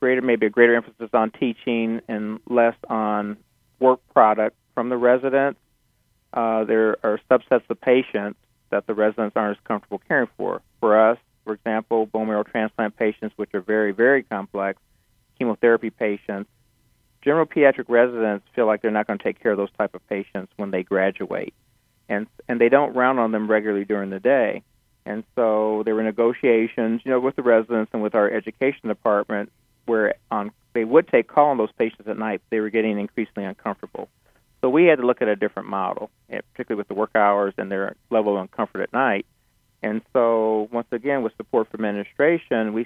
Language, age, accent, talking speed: English, 40-59, American, 190 wpm